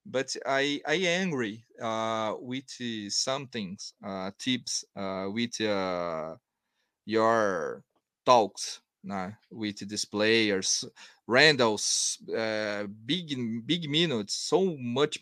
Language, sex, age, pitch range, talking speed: English, male, 30-49, 115-150 Hz, 105 wpm